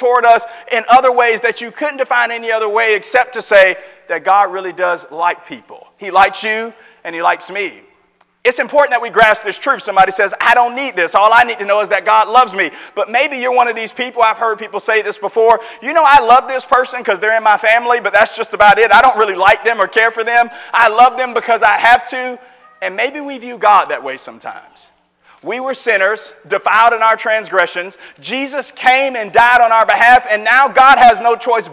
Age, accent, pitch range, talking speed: 40-59, American, 205-245 Hz, 235 wpm